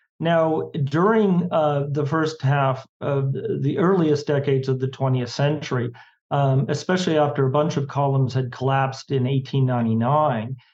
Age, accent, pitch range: 40-59, American, 130-150 Hz